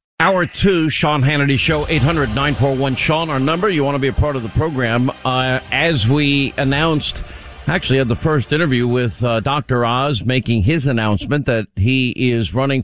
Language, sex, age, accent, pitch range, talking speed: English, male, 50-69, American, 115-135 Hz, 175 wpm